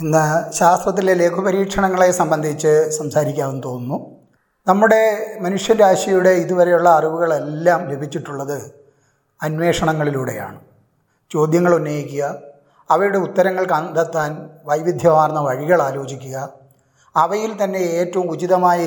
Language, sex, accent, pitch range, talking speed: Malayalam, male, native, 150-190 Hz, 75 wpm